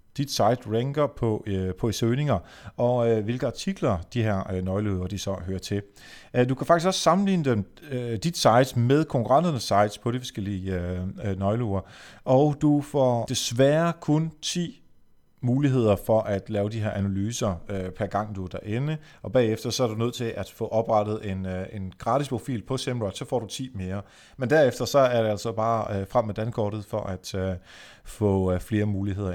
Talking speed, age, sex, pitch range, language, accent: 200 wpm, 30-49, male, 100-130 Hz, Danish, native